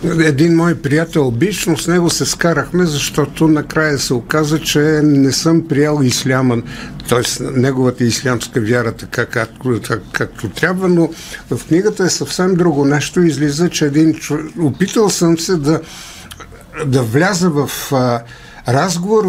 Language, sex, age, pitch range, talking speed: Bulgarian, male, 60-79, 130-170 Hz, 135 wpm